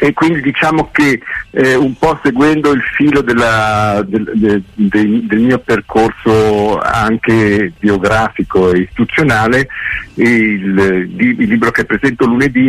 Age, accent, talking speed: 50-69, native, 115 wpm